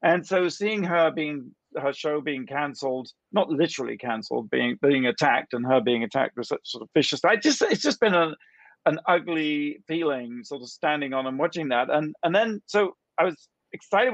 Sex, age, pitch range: male, 40-59, 140-185 Hz